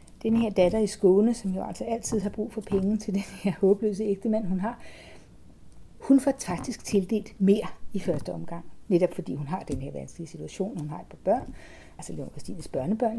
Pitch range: 175-220 Hz